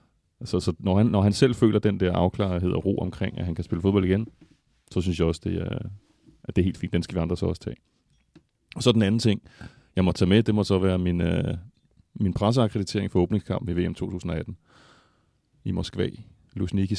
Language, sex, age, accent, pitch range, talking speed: Danish, male, 30-49, native, 90-105 Hz, 225 wpm